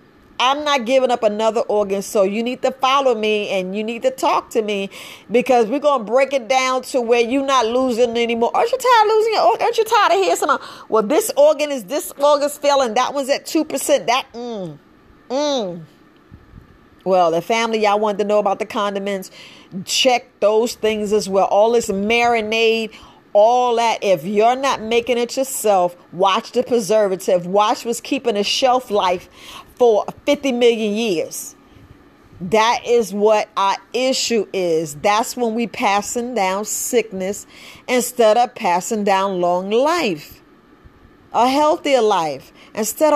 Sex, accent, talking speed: female, American, 165 wpm